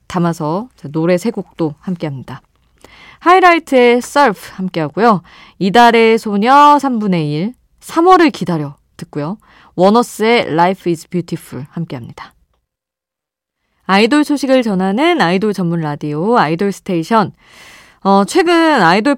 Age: 20-39